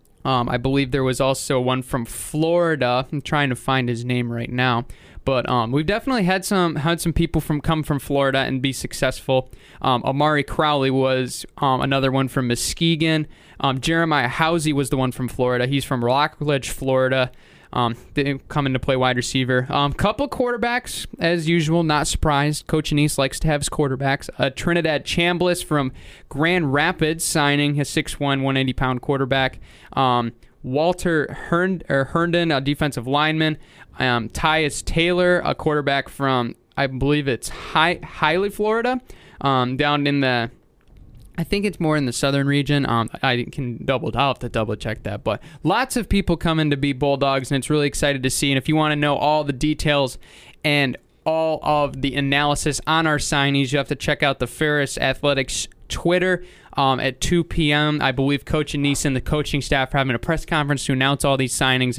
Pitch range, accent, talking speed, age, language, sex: 130-160 Hz, American, 185 wpm, 20-39, English, male